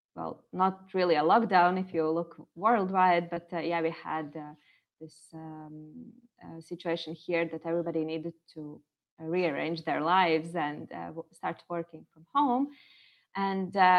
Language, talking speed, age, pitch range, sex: English, 150 wpm, 20-39, 160-195 Hz, female